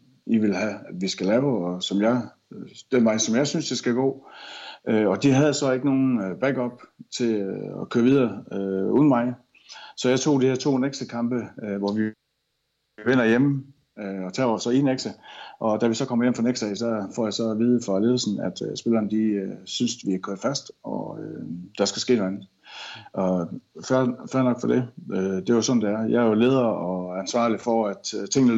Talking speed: 205 wpm